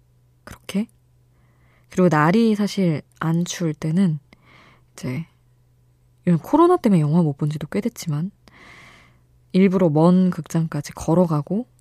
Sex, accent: female, native